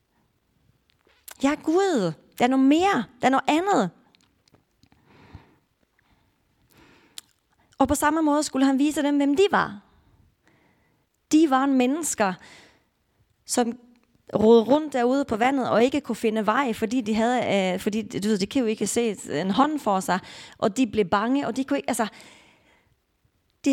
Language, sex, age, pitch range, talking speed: Danish, female, 30-49, 195-275 Hz, 155 wpm